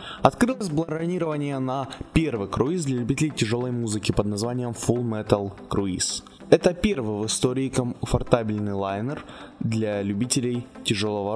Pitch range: 110-145 Hz